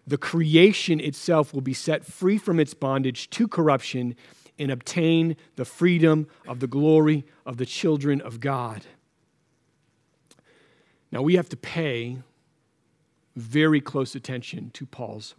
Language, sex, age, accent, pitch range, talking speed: English, male, 40-59, American, 140-165 Hz, 135 wpm